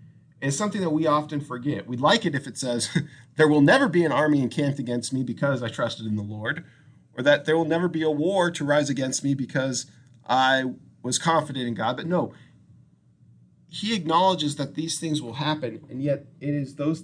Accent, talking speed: American, 205 wpm